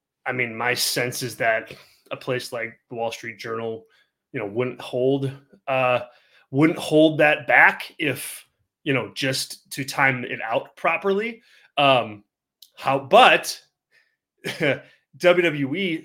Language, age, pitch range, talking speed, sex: English, 30-49, 120-145 Hz, 130 wpm, male